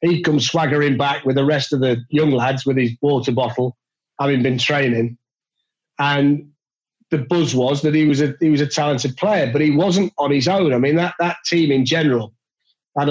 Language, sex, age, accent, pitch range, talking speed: English, male, 40-59, British, 130-150 Hz, 205 wpm